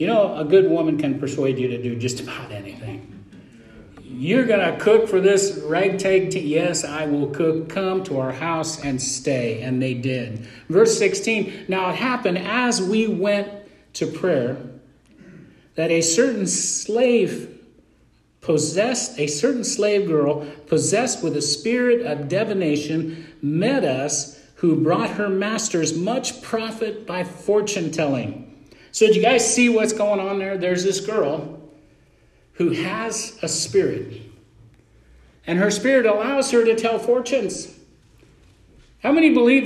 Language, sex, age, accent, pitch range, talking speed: English, male, 50-69, American, 150-220 Hz, 145 wpm